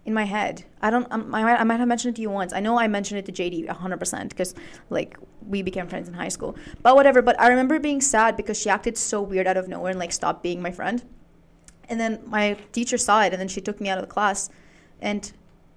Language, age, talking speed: English, 20-39, 265 wpm